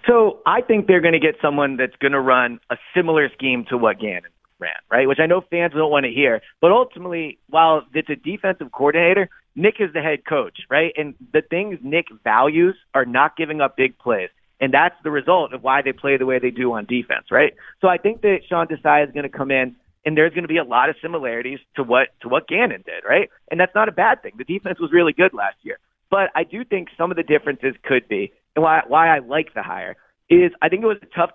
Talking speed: 250 wpm